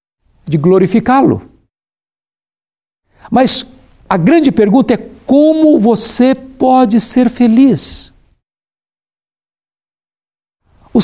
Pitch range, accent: 155-230 Hz, Brazilian